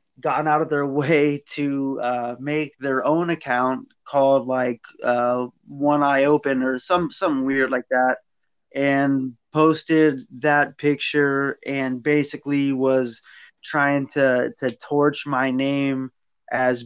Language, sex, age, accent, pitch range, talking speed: English, male, 20-39, American, 135-160 Hz, 130 wpm